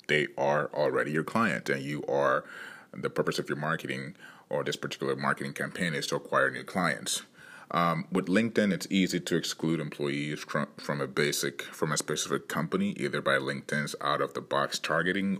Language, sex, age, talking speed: English, male, 30-49, 170 wpm